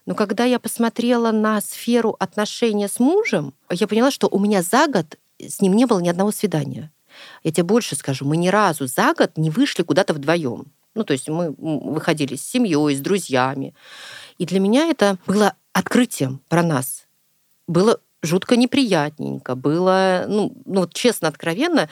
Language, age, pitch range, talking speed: Russian, 40-59, 165-220 Hz, 165 wpm